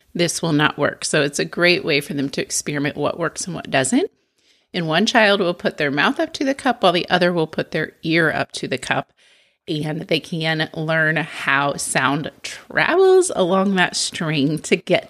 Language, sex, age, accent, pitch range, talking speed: English, female, 30-49, American, 150-205 Hz, 205 wpm